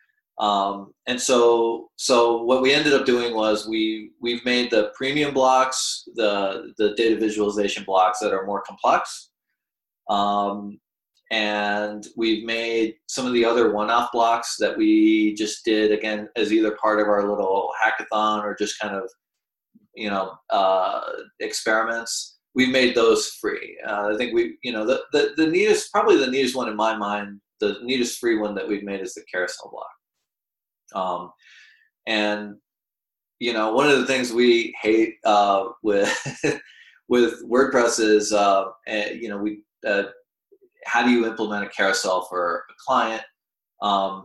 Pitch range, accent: 105-130 Hz, American